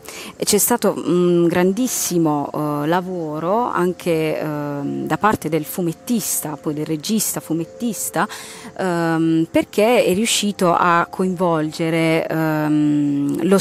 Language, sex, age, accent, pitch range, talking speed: Italian, female, 30-49, native, 155-190 Hz, 90 wpm